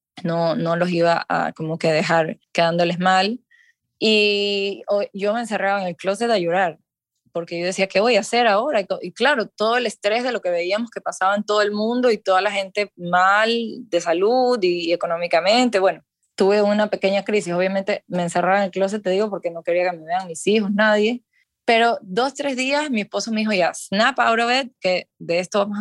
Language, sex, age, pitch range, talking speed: English, female, 10-29, 175-210 Hz, 210 wpm